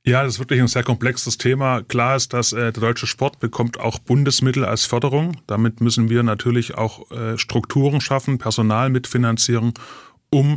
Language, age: German, 20-39